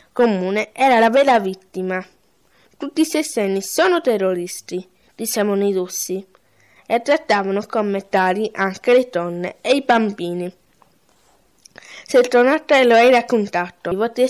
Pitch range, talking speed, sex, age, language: 190-250 Hz, 125 wpm, female, 20-39, Italian